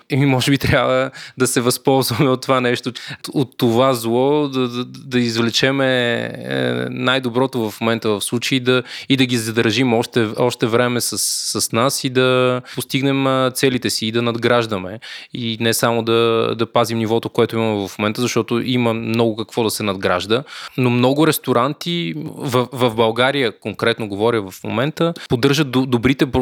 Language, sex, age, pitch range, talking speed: Bulgarian, male, 20-39, 115-135 Hz, 160 wpm